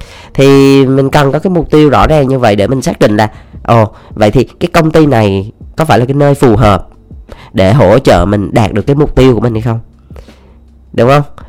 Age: 20-39